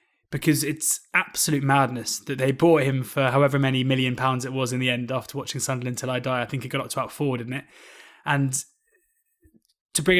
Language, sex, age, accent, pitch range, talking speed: English, male, 20-39, British, 130-155 Hz, 220 wpm